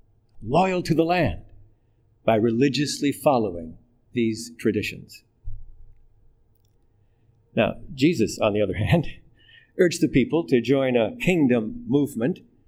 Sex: male